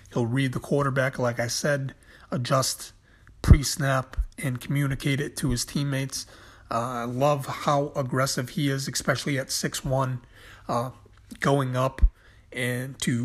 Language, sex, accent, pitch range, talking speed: English, male, American, 120-135 Hz, 145 wpm